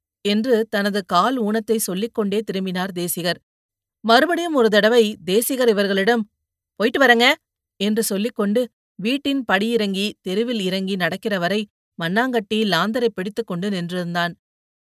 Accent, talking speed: native, 100 wpm